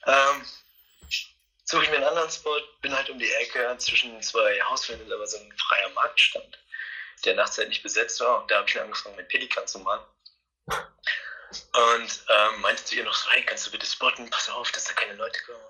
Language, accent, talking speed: German, German, 205 wpm